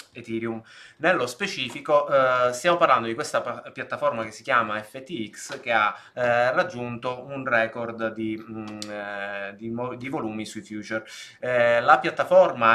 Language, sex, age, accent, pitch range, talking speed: Italian, male, 20-39, native, 110-130 Hz, 145 wpm